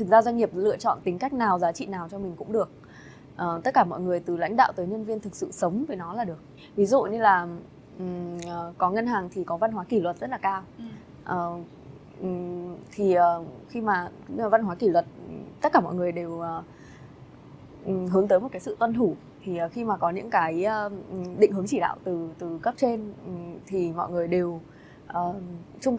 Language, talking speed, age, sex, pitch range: Vietnamese, 200 wpm, 20-39, female, 175-220 Hz